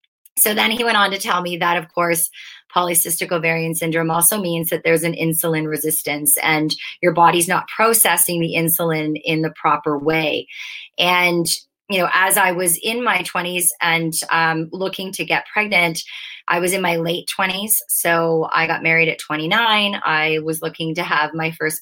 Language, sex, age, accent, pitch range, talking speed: English, female, 30-49, American, 160-185 Hz, 180 wpm